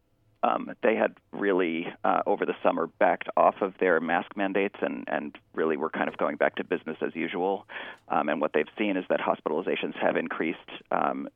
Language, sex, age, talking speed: English, male, 40-59, 195 wpm